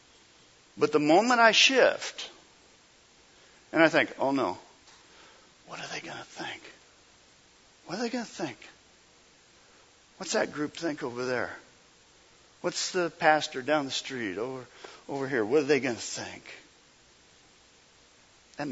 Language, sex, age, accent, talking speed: English, male, 50-69, American, 140 wpm